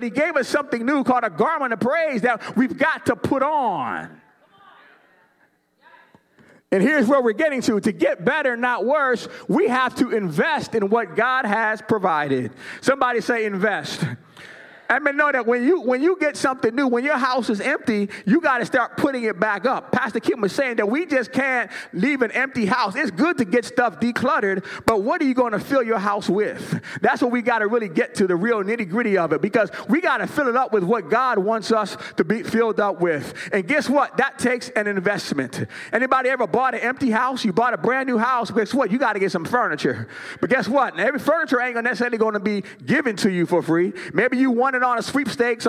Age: 30-49